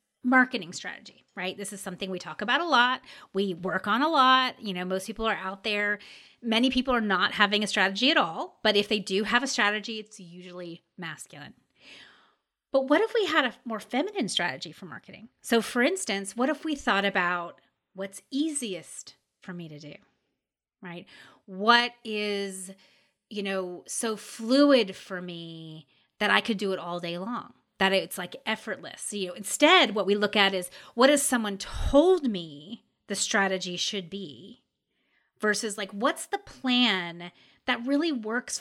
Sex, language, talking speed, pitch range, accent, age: female, English, 175 wpm, 190-255 Hz, American, 30-49